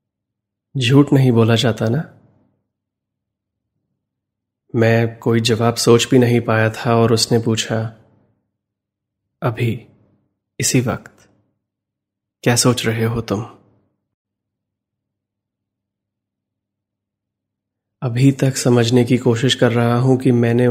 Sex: male